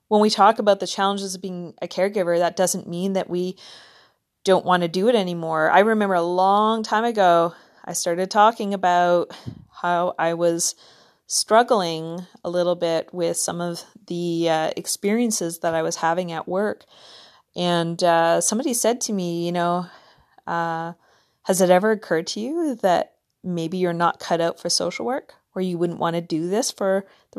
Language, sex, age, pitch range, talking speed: English, female, 30-49, 170-195 Hz, 180 wpm